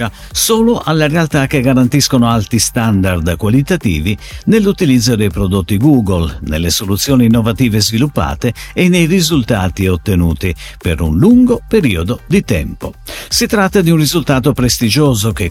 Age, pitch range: 50-69, 100-155 Hz